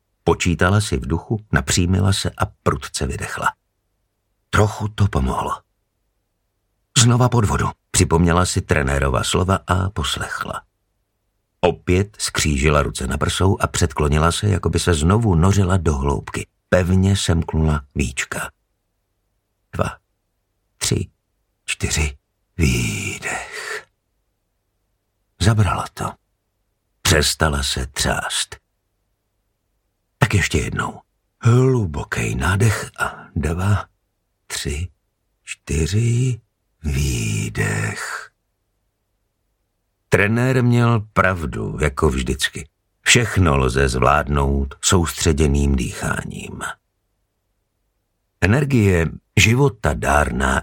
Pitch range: 80-105 Hz